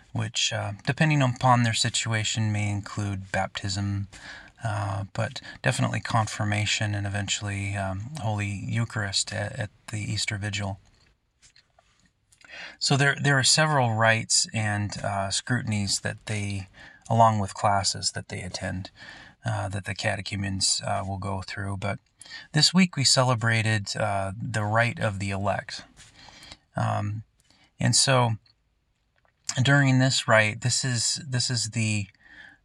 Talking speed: 130 wpm